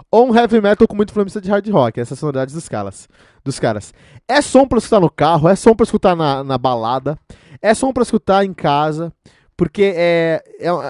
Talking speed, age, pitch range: 205 wpm, 20-39, 125-185 Hz